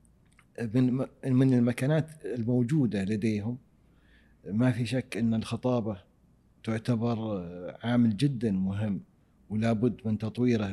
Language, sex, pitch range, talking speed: Arabic, male, 105-120 Hz, 95 wpm